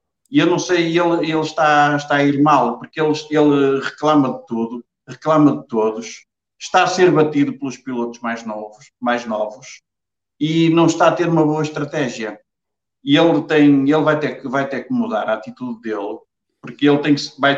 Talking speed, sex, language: 170 wpm, male, English